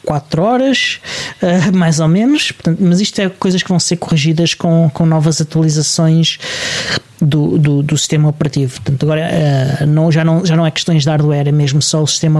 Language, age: Portuguese, 20-39